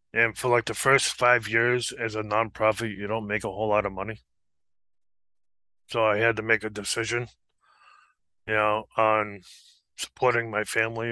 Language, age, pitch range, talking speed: English, 20-39, 105-120 Hz, 165 wpm